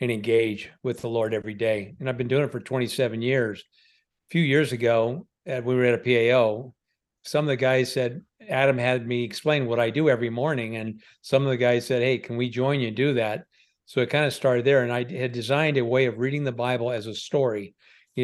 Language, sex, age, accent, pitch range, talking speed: English, male, 50-69, American, 120-140 Hz, 235 wpm